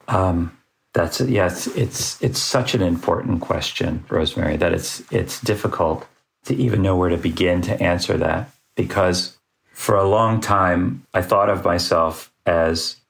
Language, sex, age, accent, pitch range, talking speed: English, male, 40-59, American, 85-95 Hz, 150 wpm